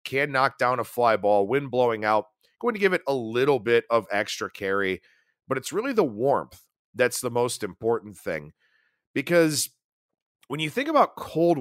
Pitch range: 115-150 Hz